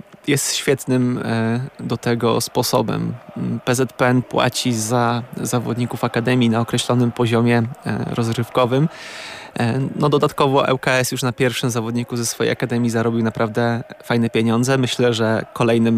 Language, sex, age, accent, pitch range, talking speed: Polish, male, 20-39, native, 115-135 Hz, 115 wpm